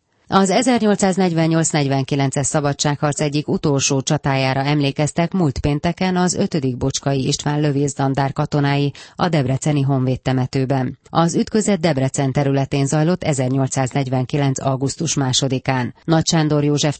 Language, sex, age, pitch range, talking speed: Hungarian, female, 30-49, 130-155 Hz, 110 wpm